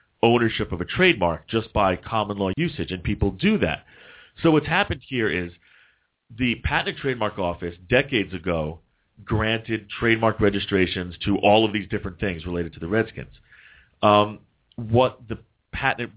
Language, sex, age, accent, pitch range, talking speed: English, male, 40-59, American, 90-115 Hz, 150 wpm